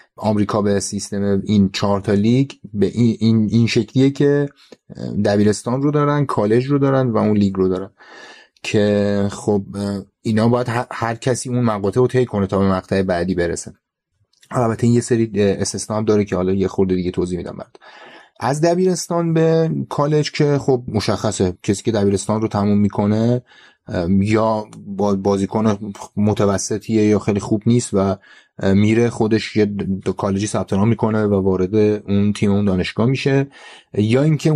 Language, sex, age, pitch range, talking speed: Persian, male, 30-49, 100-125 Hz, 155 wpm